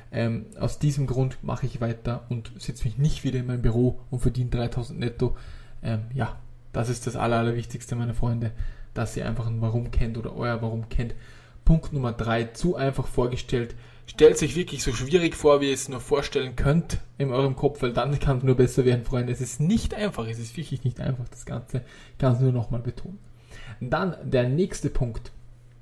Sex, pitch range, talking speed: male, 120-145 Hz, 205 wpm